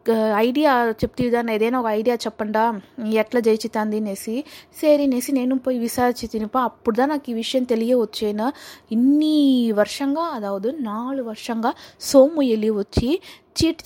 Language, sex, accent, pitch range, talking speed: Telugu, female, native, 220-275 Hz, 120 wpm